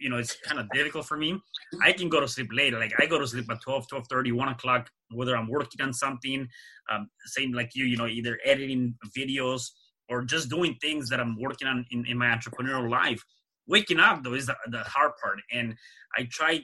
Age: 20-39